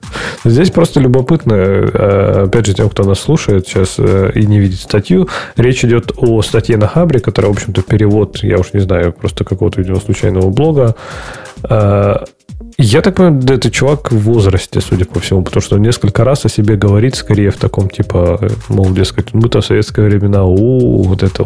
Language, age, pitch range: Russian, 20-39, 100-125 Hz